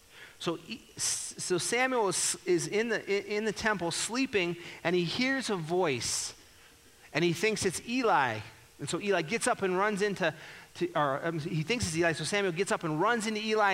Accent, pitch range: American, 120-200 Hz